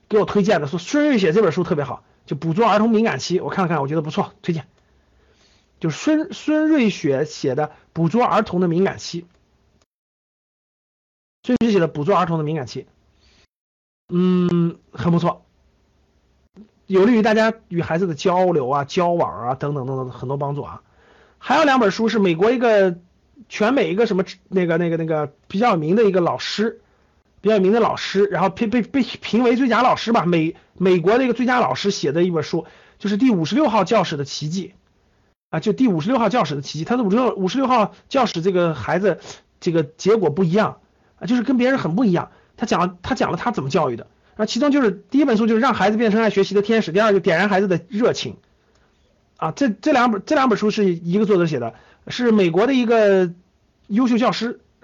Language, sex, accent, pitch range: Chinese, male, native, 165-225 Hz